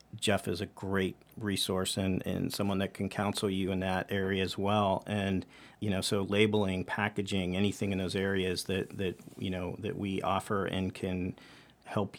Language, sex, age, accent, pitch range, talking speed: English, male, 40-59, American, 95-110 Hz, 180 wpm